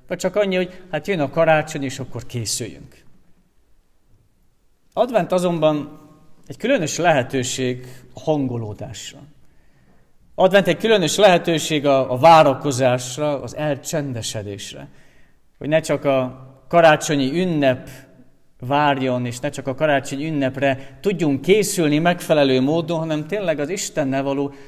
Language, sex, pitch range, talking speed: Hungarian, male, 130-155 Hz, 115 wpm